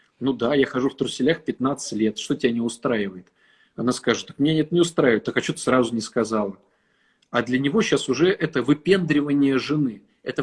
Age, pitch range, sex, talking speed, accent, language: 40-59, 120-150 Hz, male, 200 wpm, native, Russian